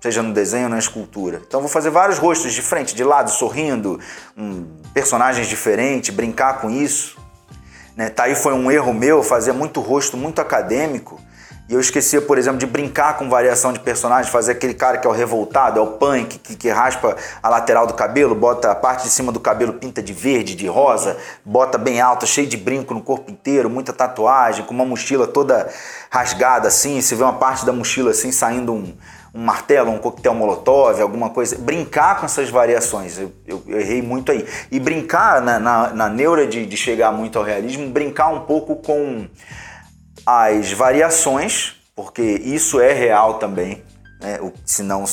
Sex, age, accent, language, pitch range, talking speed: male, 30-49, Brazilian, Portuguese, 105-130 Hz, 190 wpm